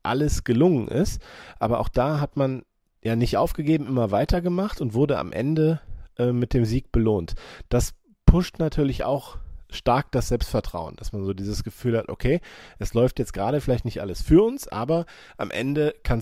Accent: German